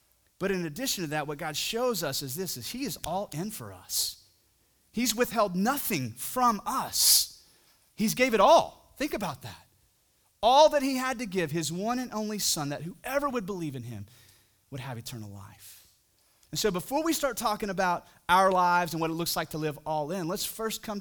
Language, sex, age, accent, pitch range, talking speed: English, male, 30-49, American, 145-225 Hz, 205 wpm